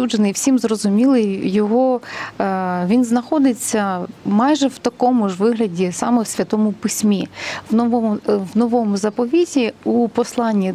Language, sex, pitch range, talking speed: Ukrainian, female, 210-255 Hz, 115 wpm